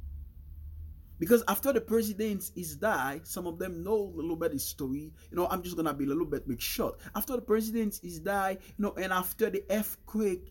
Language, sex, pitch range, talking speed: English, male, 130-210 Hz, 210 wpm